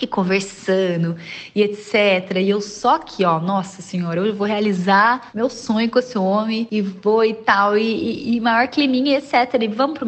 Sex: female